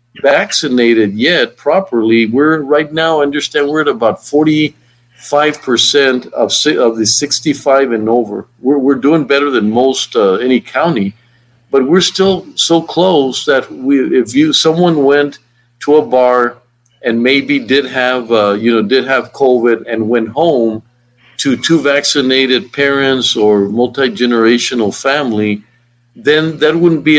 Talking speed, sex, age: 145 wpm, male, 50-69